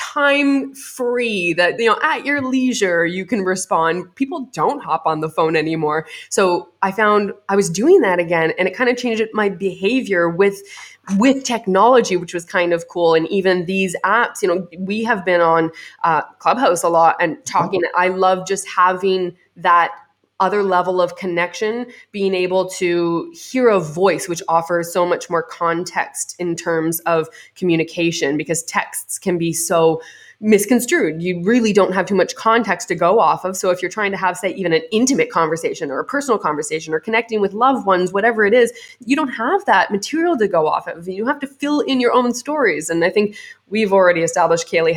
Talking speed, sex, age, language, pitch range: 195 wpm, female, 20-39, English, 170-235 Hz